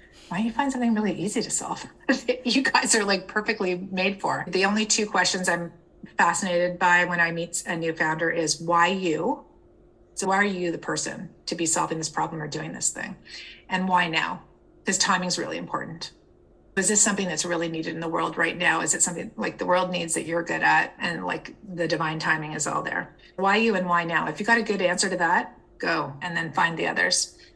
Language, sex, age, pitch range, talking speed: English, female, 30-49, 170-210 Hz, 225 wpm